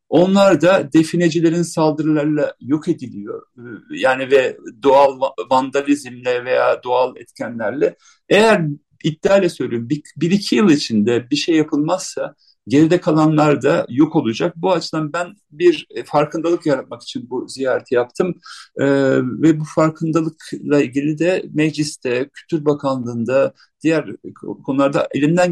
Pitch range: 145-185 Hz